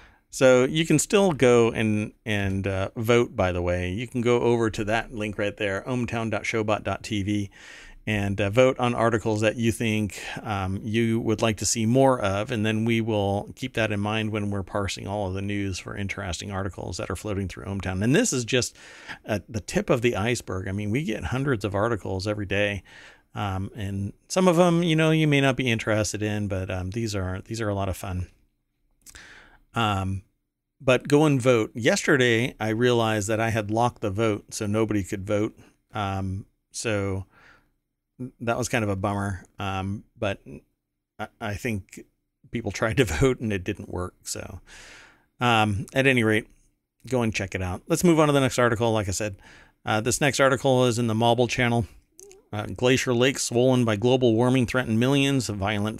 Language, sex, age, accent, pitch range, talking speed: English, male, 40-59, American, 100-120 Hz, 195 wpm